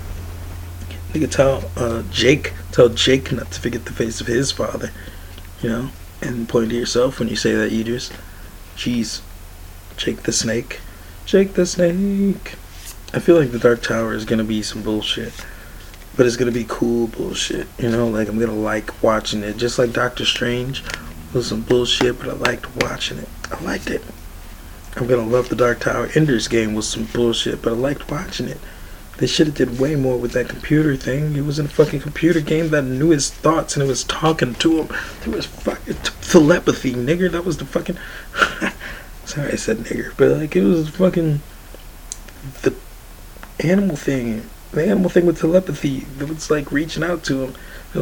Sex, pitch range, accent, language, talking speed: male, 110-175 Hz, American, English, 195 wpm